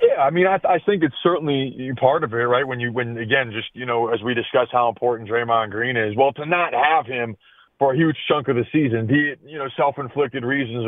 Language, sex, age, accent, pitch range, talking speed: English, male, 30-49, American, 135-165 Hz, 255 wpm